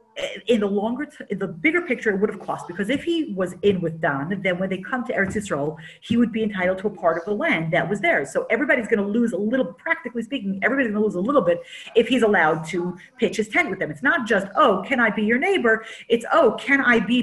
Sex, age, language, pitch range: female, 40-59, English, 190-255 Hz